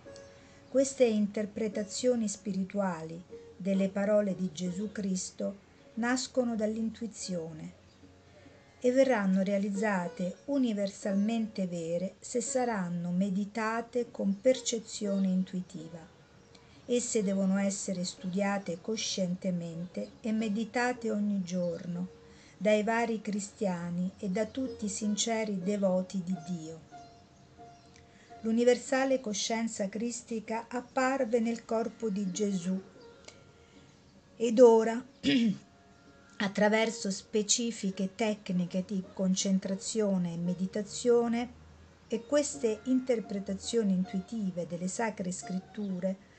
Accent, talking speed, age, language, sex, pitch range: native, 85 wpm, 50-69, Italian, female, 185-230 Hz